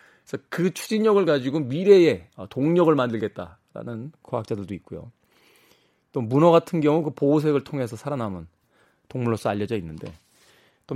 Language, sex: Korean, male